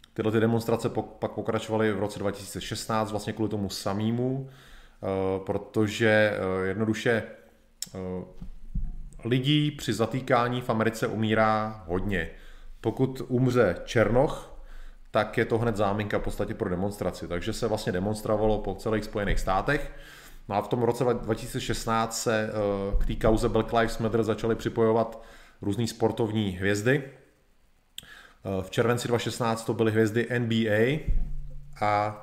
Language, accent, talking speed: Czech, native, 125 wpm